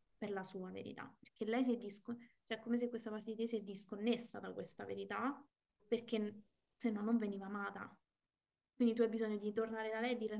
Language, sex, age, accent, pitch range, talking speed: Italian, female, 20-39, native, 210-235 Hz, 225 wpm